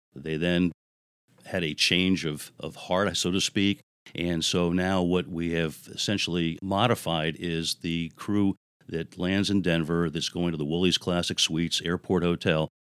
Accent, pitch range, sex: American, 80-95 Hz, male